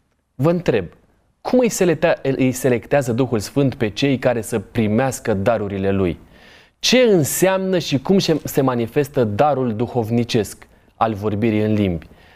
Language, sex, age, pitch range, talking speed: Romanian, male, 20-39, 110-140 Hz, 125 wpm